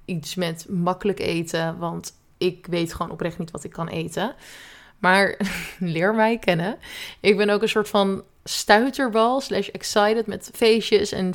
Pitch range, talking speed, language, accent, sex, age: 180-230 Hz, 160 wpm, Dutch, Dutch, female, 20-39